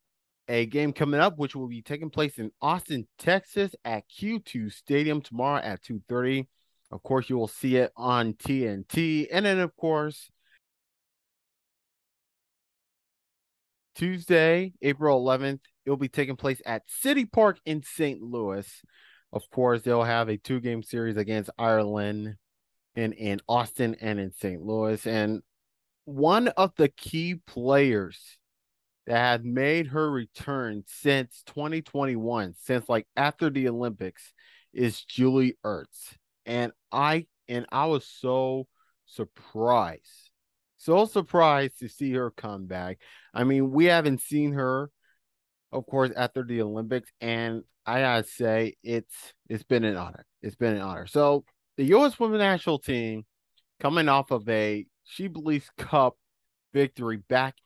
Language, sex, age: English, male, 30-49